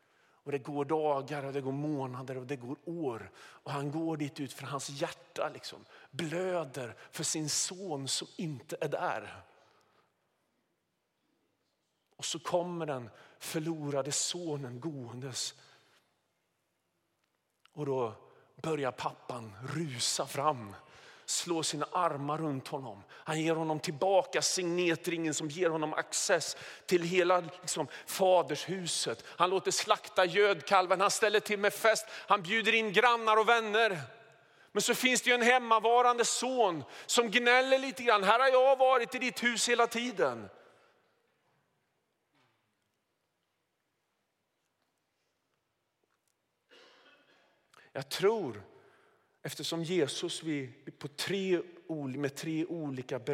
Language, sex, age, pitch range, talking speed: Swedish, male, 40-59, 145-195 Hz, 120 wpm